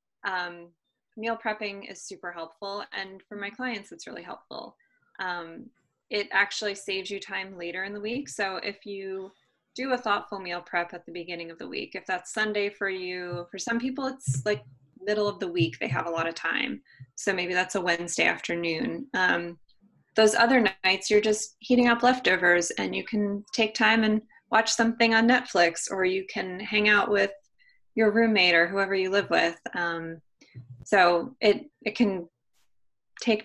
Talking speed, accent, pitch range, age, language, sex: 180 wpm, American, 175-220 Hz, 20-39, English, female